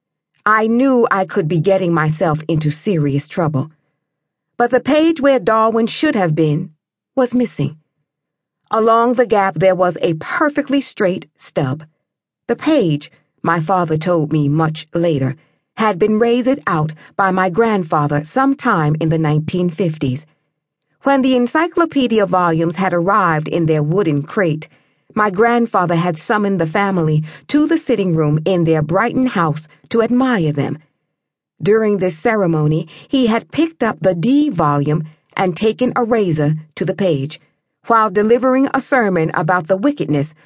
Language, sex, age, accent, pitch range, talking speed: English, female, 40-59, American, 155-225 Hz, 145 wpm